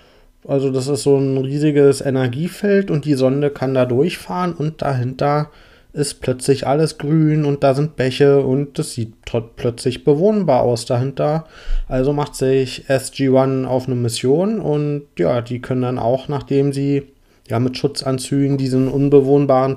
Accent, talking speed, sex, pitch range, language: German, 150 wpm, male, 130-145 Hz, German